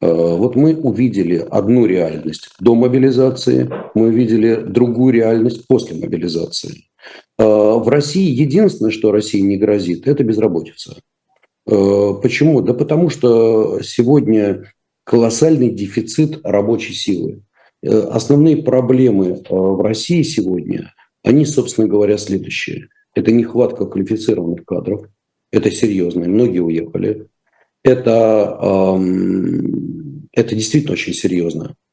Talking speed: 100 wpm